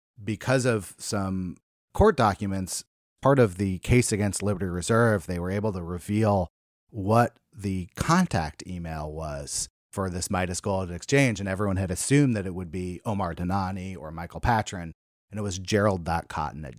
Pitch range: 95-130 Hz